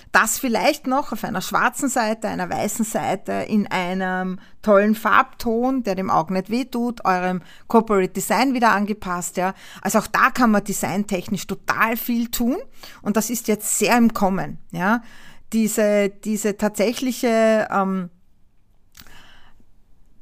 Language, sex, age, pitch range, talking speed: German, female, 40-59, 185-235 Hz, 135 wpm